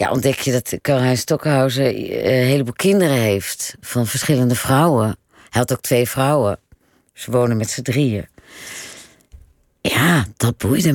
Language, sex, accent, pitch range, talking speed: Dutch, female, Dutch, 115-145 Hz, 140 wpm